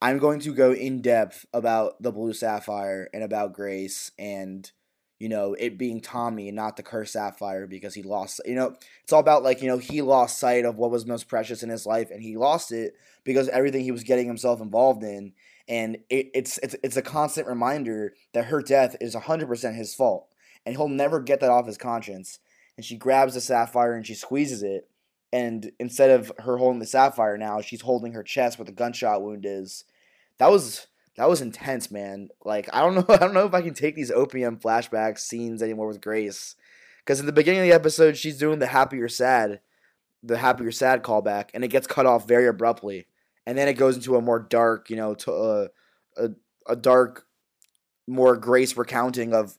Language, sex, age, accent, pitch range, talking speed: English, male, 20-39, American, 110-130 Hz, 210 wpm